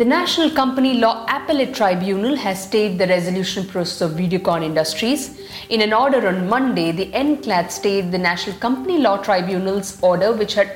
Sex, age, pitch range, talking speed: female, 50-69, 180-235 Hz, 165 wpm